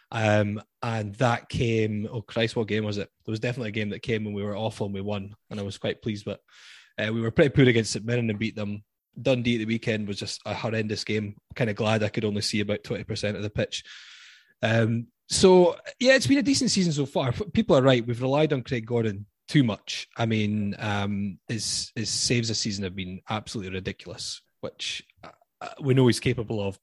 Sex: male